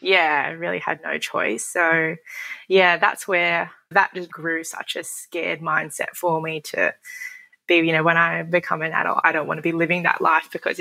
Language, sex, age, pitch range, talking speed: English, female, 20-39, 160-180 Hz, 205 wpm